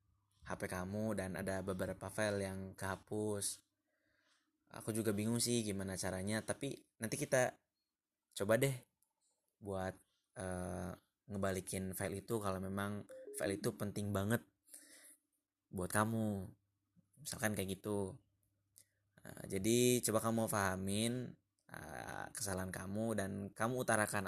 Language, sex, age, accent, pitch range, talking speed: Indonesian, male, 20-39, native, 95-115 Hz, 115 wpm